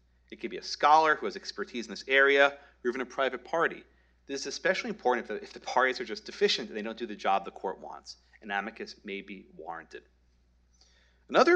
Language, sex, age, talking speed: English, male, 40-59, 220 wpm